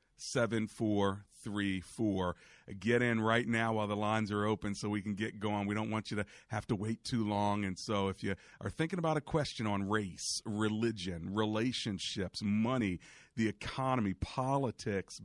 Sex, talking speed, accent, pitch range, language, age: male, 175 wpm, American, 100-120 Hz, English, 40-59